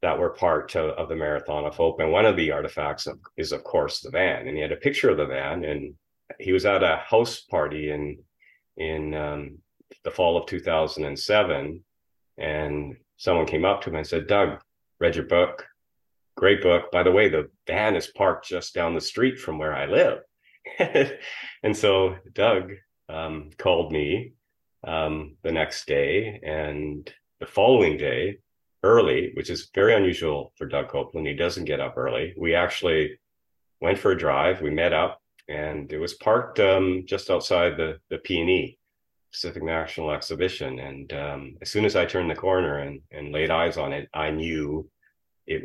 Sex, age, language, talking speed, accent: male, 30-49, English, 180 wpm, American